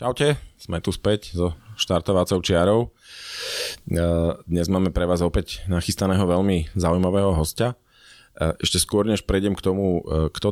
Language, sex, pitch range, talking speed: Slovak, male, 80-95 Hz, 130 wpm